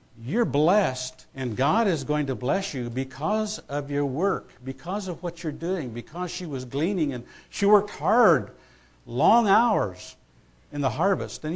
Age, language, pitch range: 60-79, English, 130-175 Hz